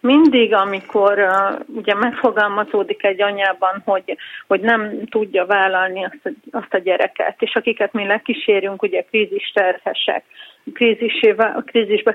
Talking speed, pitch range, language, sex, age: 120 wpm, 195-240 Hz, Hungarian, female, 40-59